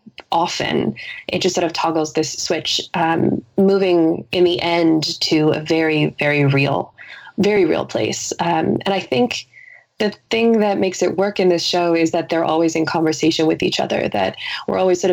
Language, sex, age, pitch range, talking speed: English, female, 20-39, 165-200 Hz, 185 wpm